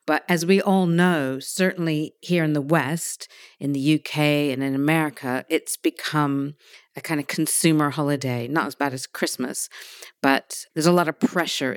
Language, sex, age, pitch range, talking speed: English, female, 50-69, 140-170 Hz, 175 wpm